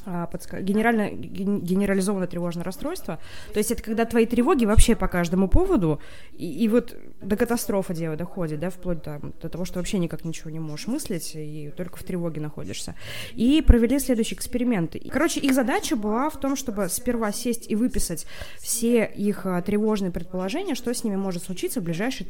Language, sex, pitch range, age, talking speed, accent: Russian, female, 170-235 Hz, 20-39, 170 wpm, native